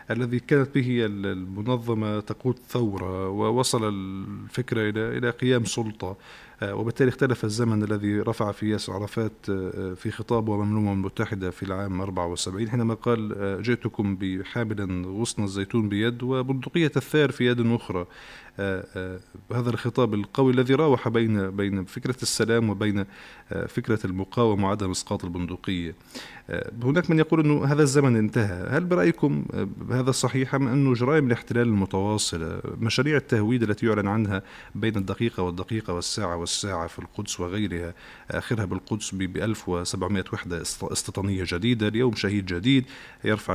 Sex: male